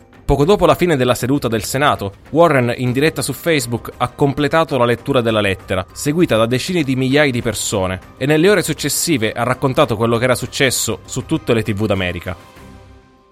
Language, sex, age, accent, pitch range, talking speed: Italian, male, 20-39, native, 110-150 Hz, 185 wpm